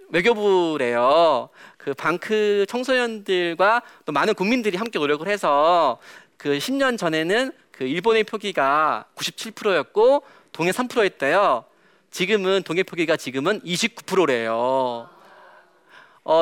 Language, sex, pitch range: Korean, male, 160-235 Hz